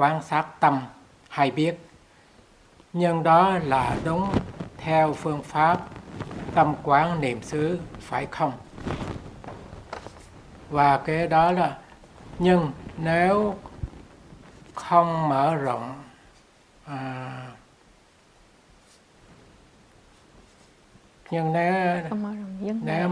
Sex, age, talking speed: male, 60-79, 80 wpm